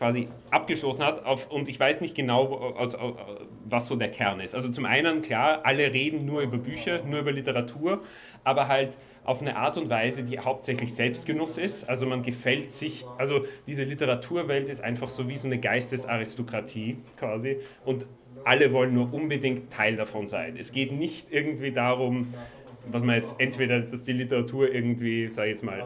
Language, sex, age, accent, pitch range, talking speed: German, male, 40-59, German, 115-140 Hz, 175 wpm